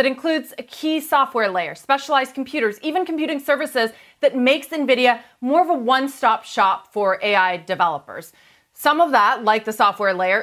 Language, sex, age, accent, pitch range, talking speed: English, female, 30-49, American, 215-275 Hz, 165 wpm